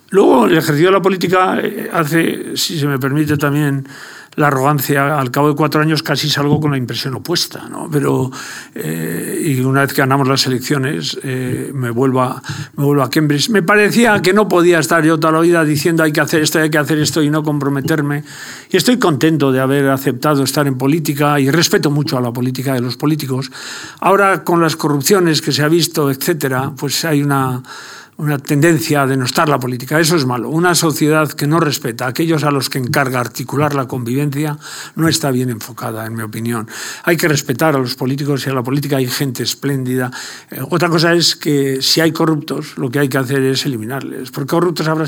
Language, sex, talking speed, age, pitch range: Spanish, male, 205 wpm, 50-69, 135-160 Hz